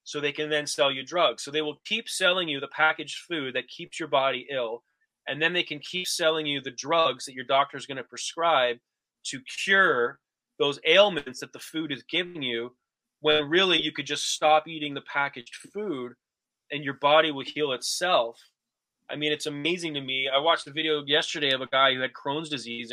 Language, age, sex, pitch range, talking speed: English, 20-39, male, 130-160 Hz, 210 wpm